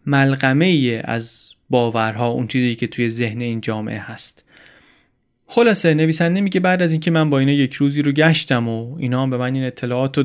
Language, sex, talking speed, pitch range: Persian, male, 185 wpm, 120-155 Hz